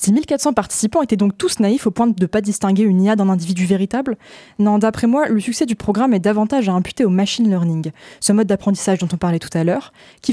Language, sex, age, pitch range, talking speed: French, female, 20-39, 185-230 Hz, 245 wpm